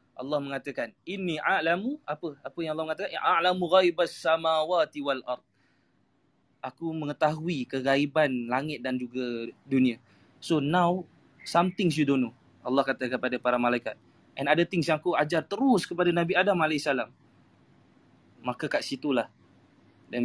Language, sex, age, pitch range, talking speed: Malay, male, 20-39, 130-165 Hz, 140 wpm